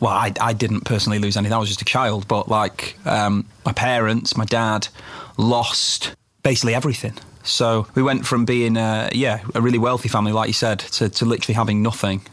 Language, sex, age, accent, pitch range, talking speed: German, male, 30-49, British, 110-130 Hz, 200 wpm